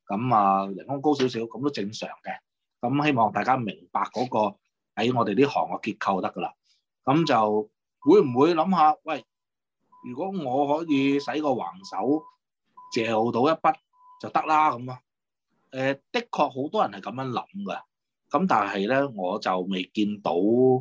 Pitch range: 110-160 Hz